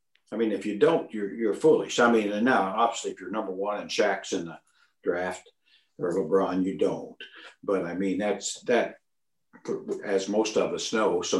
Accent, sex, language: American, male, English